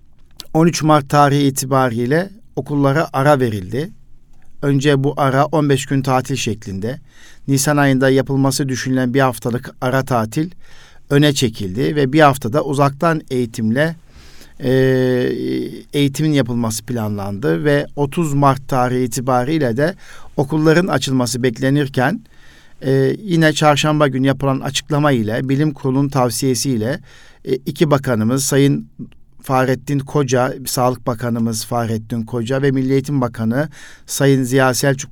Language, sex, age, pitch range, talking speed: Turkish, male, 50-69, 120-150 Hz, 115 wpm